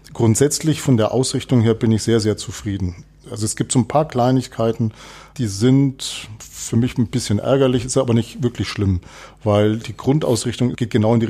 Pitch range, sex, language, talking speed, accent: 115-130 Hz, male, German, 190 wpm, German